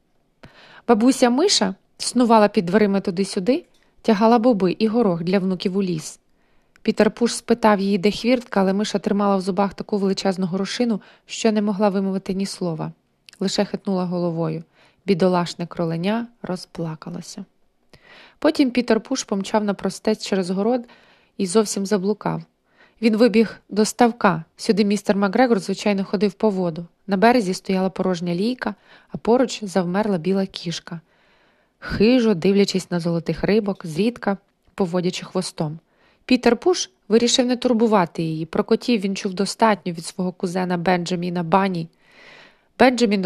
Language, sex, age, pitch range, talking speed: Ukrainian, female, 20-39, 185-225 Hz, 135 wpm